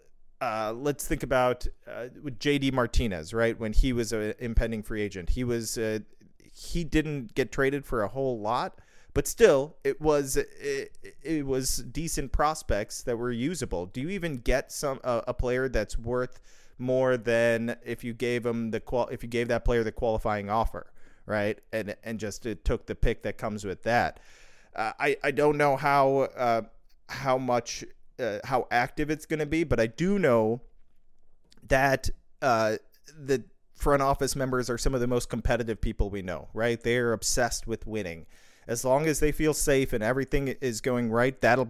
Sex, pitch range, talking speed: male, 110-135 Hz, 185 wpm